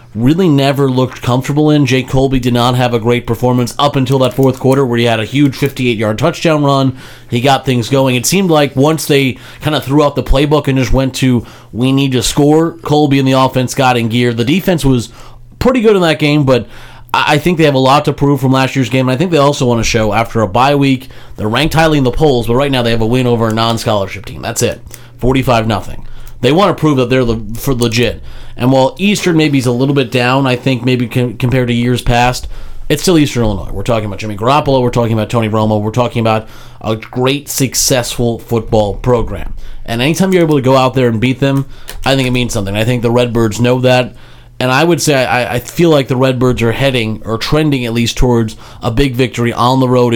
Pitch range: 120-140 Hz